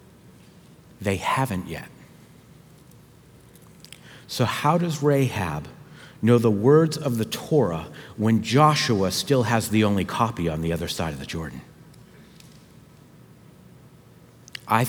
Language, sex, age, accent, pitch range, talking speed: English, male, 50-69, American, 105-145 Hz, 115 wpm